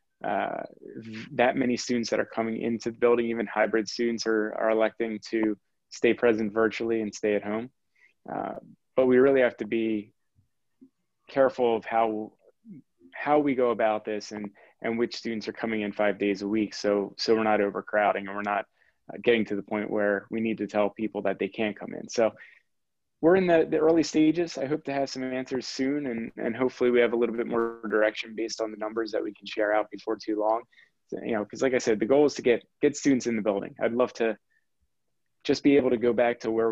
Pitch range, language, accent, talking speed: 105-120 Hz, English, American, 225 wpm